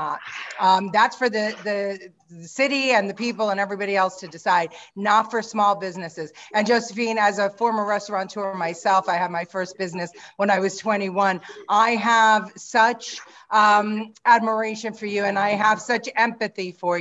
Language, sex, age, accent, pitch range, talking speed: English, female, 40-59, American, 180-215 Hz, 175 wpm